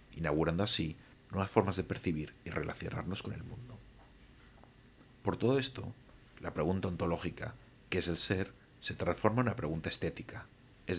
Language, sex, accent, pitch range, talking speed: English, male, Spanish, 85-125 Hz, 155 wpm